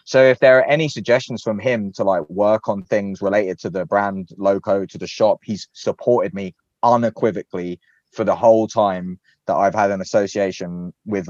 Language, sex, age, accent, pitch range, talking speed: English, male, 20-39, British, 95-115 Hz, 185 wpm